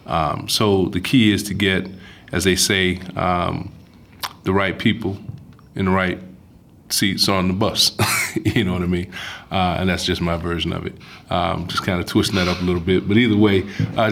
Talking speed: 205 wpm